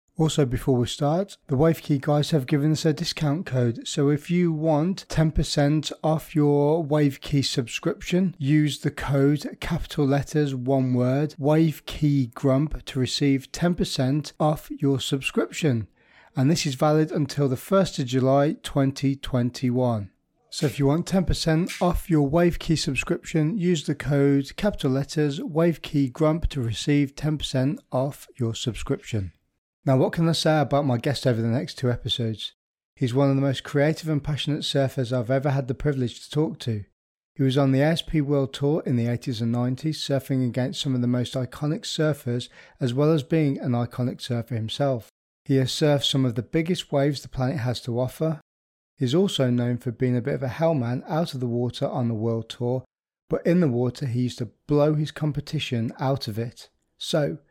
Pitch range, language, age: 130-155 Hz, English, 30-49